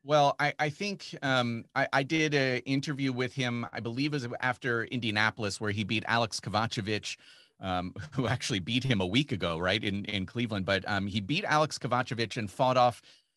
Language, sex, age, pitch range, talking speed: English, male, 30-49, 105-135 Hz, 200 wpm